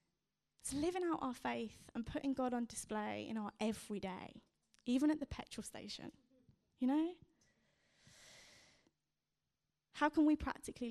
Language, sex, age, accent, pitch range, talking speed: English, female, 10-29, British, 270-410 Hz, 130 wpm